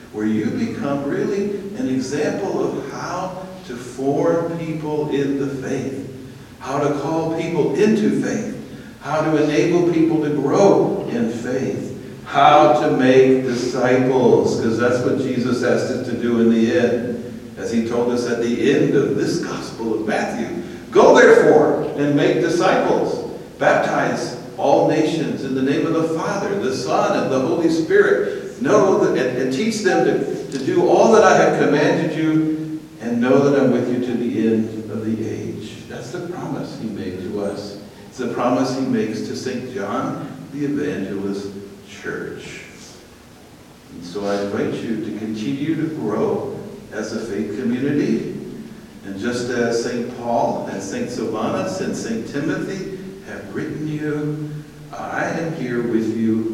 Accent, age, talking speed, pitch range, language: American, 60-79, 160 wpm, 120-160 Hz, English